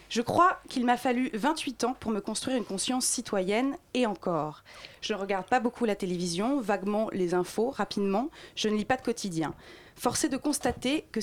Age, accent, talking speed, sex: 30-49, French, 190 wpm, female